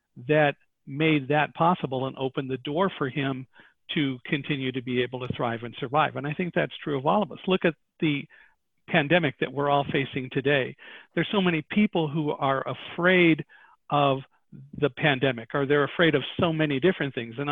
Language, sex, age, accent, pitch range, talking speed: English, male, 50-69, American, 135-170 Hz, 190 wpm